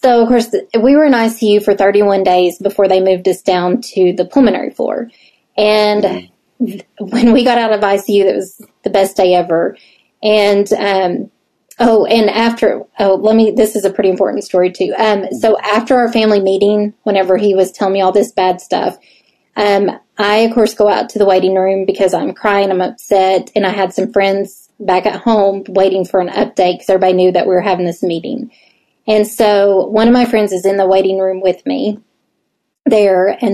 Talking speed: 200 wpm